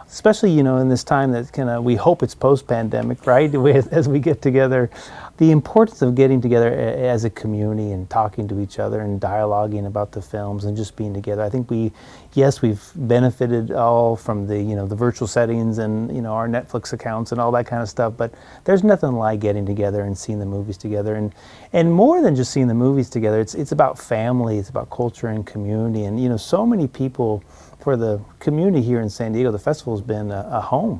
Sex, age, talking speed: male, 30-49, 225 wpm